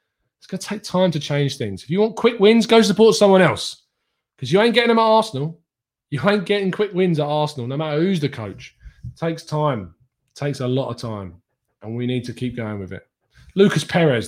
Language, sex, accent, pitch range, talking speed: English, male, British, 125-170 Hz, 230 wpm